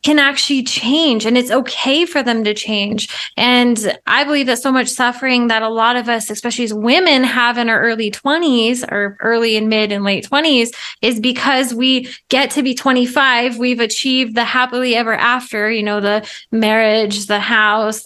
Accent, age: American, 20-39